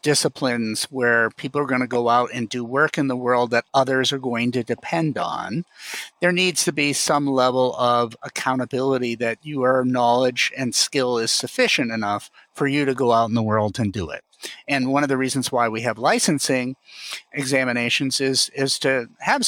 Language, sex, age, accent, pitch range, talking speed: English, male, 50-69, American, 125-165 Hz, 190 wpm